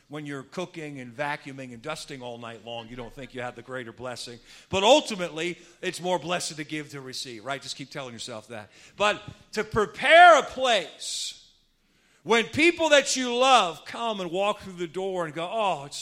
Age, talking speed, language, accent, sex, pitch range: 50-69, 200 wpm, English, American, male, 130-195 Hz